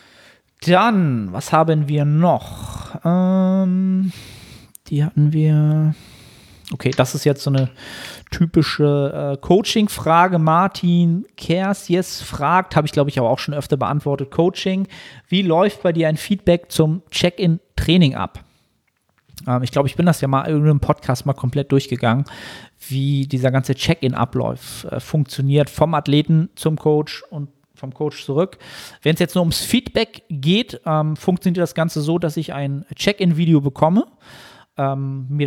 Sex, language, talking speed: male, German, 150 wpm